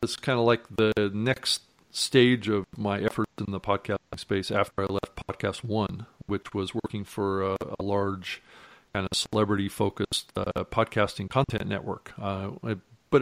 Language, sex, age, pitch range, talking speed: English, male, 40-59, 95-110 Hz, 165 wpm